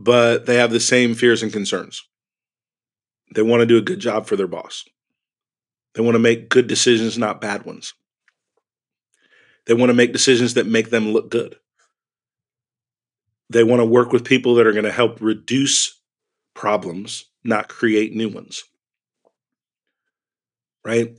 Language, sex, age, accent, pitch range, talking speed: English, male, 40-59, American, 110-125 Hz, 155 wpm